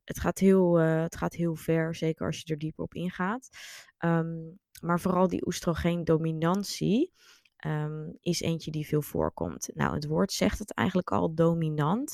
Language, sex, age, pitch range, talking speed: Dutch, female, 20-39, 155-180 Hz, 170 wpm